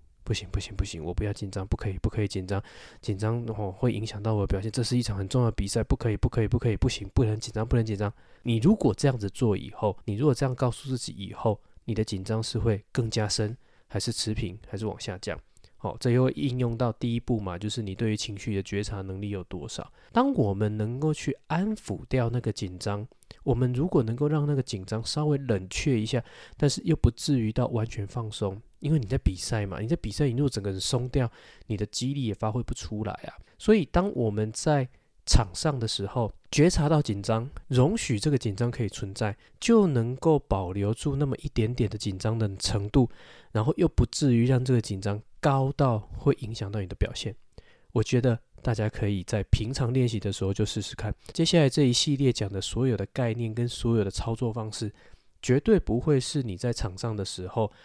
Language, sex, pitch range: Chinese, male, 105-130 Hz